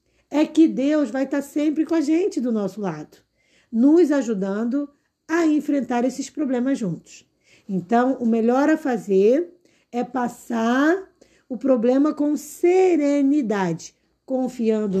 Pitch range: 240-305 Hz